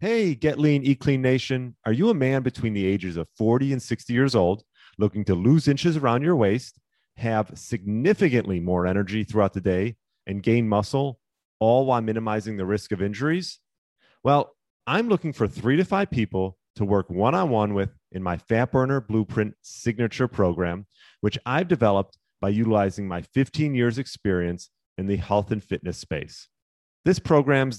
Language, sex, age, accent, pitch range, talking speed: English, male, 30-49, American, 95-130 Hz, 170 wpm